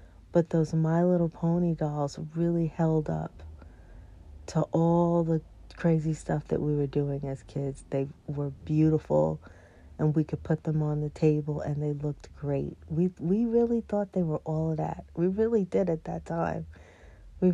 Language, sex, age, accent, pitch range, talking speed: English, female, 40-59, American, 120-165 Hz, 175 wpm